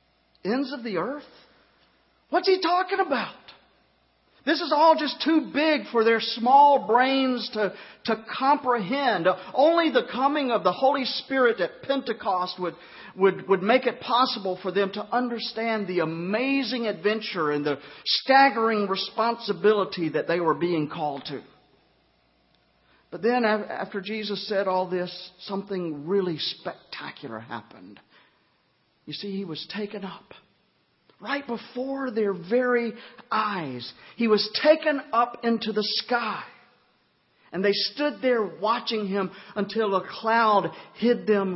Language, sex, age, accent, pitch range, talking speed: English, male, 50-69, American, 180-240 Hz, 135 wpm